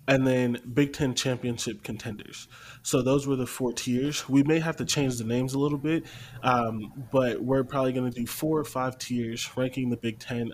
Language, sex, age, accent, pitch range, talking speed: English, male, 20-39, American, 120-135 Hz, 210 wpm